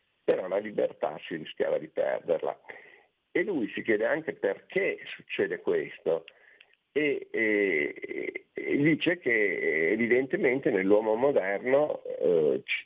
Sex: male